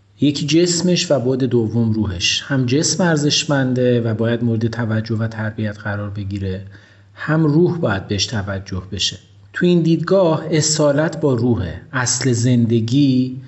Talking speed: 140 wpm